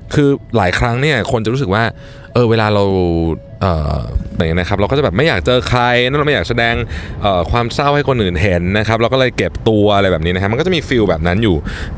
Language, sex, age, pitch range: Thai, male, 20-39, 90-125 Hz